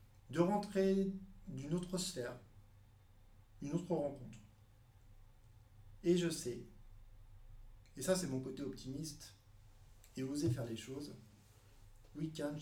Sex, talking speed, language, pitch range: male, 115 wpm, French, 110-145 Hz